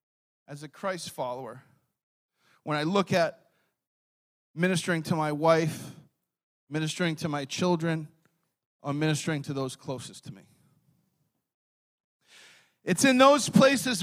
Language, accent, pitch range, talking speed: English, American, 155-235 Hz, 115 wpm